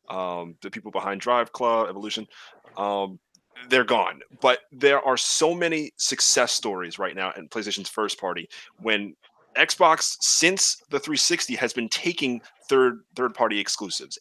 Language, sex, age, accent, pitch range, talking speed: English, male, 30-49, American, 100-125 Hz, 150 wpm